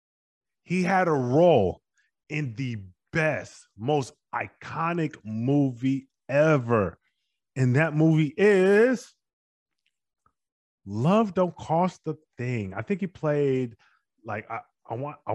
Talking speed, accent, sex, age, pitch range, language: 110 wpm, American, male, 20-39, 120-160 Hz, English